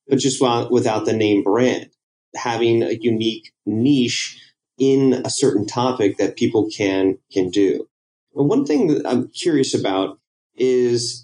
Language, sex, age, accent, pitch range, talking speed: English, male, 30-49, American, 120-150 Hz, 145 wpm